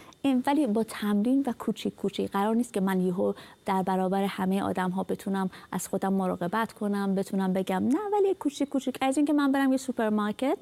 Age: 30-49